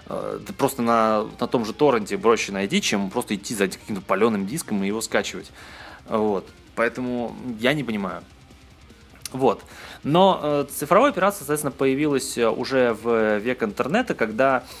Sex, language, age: male, Russian, 20-39